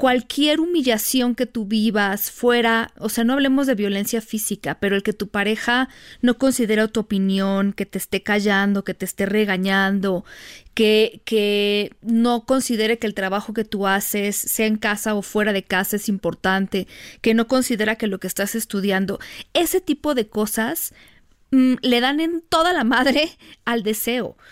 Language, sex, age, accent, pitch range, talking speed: Spanish, female, 40-59, Mexican, 205-260 Hz, 170 wpm